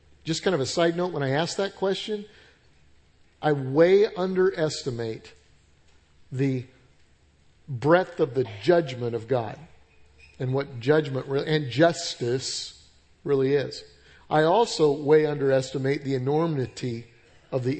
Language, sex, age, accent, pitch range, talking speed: English, male, 50-69, American, 120-165 Hz, 120 wpm